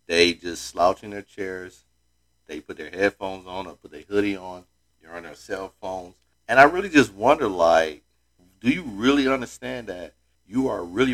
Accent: American